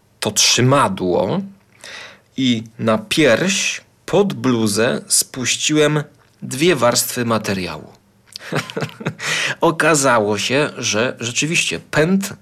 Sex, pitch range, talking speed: male, 105-130 Hz, 75 wpm